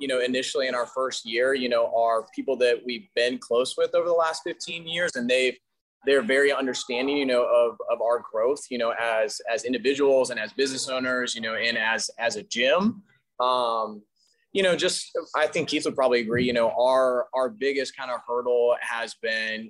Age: 20-39